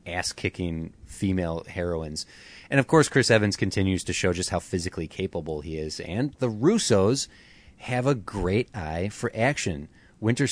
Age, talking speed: 30-49, 160 wpm